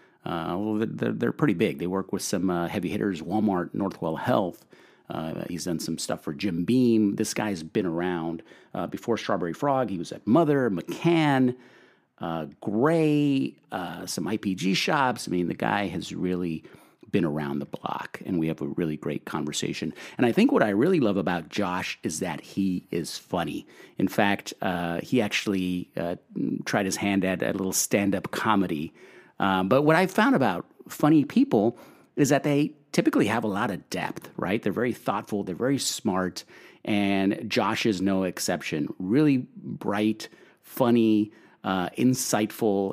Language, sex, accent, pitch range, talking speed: English, male, American, 85-110 Hz, 170 wpm